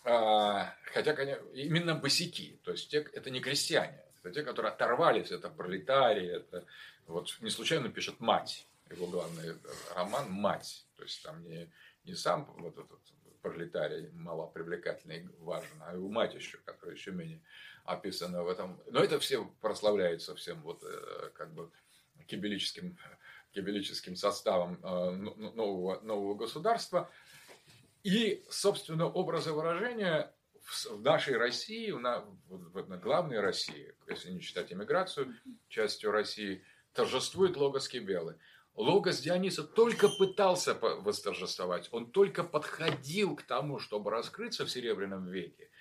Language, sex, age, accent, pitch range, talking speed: Russian, male, 40-59, native, 135-215 Hz, 125 wpm